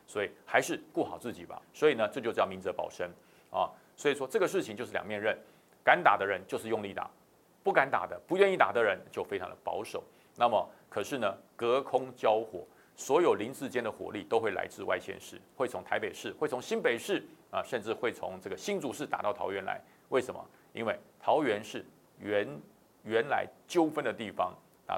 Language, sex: Chinese, male